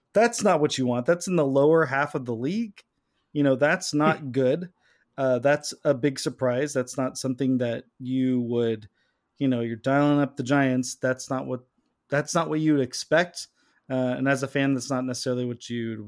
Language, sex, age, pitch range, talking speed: English, male, 30-49, 130-160 Hz, 200 wpm